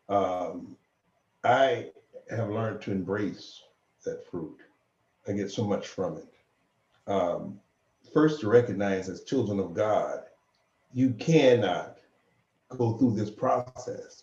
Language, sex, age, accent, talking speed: English, male, 50-69, American, 120 wpm